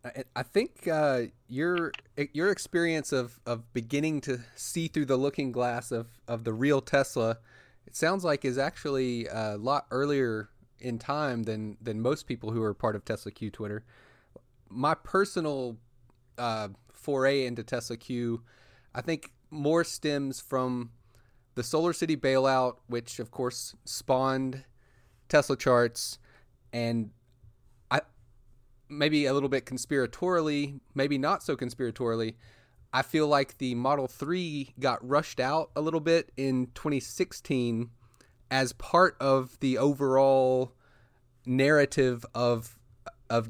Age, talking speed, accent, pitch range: 30-49, 130 wpm, American, 115-140 Hz